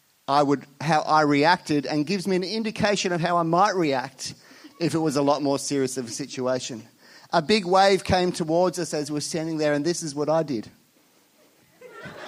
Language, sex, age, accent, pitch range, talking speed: English, male, 30-49, Australian, 140-180 Hz, 195 wpm